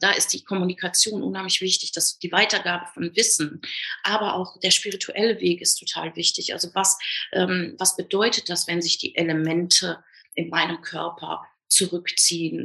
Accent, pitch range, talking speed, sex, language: German, 170-195 Hz, 155 wpm, female, German